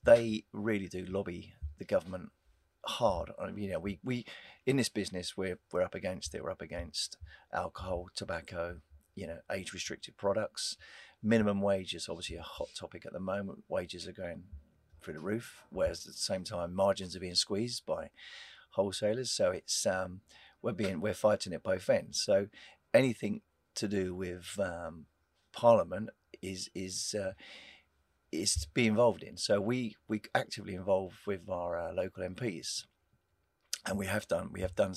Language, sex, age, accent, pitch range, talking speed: English, male, 40-59, British, 90-110 Hz, 170 wpm